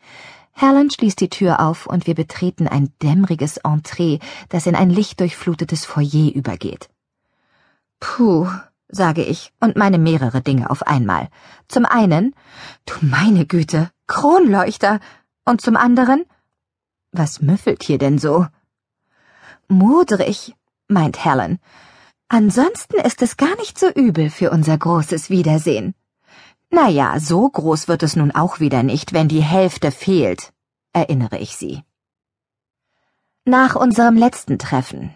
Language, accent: German, German